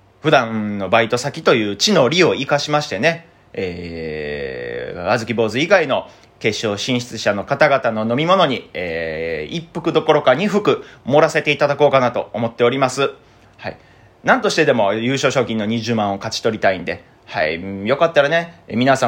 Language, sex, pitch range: Japanese, male, 110-150 Hz